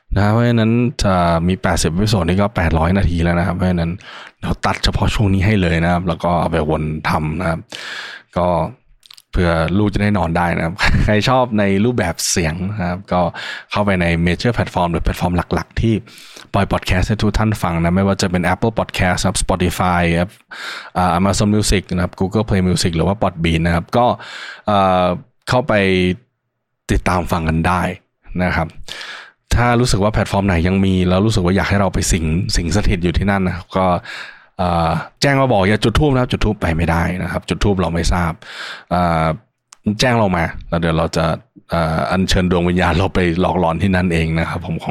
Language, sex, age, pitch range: Thai, male, 20-39, 85-105 Hz